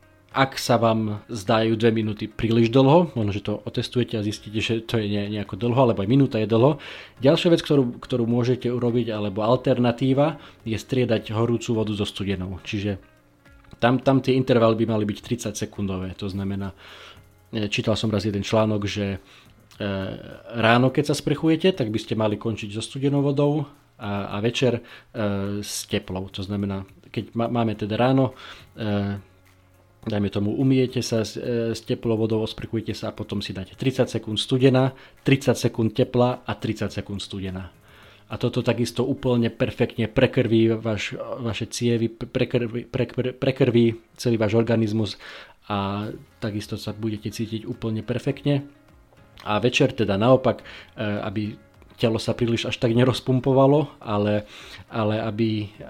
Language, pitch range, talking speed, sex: Slovak, 105-125 Hz, 145 wpm, male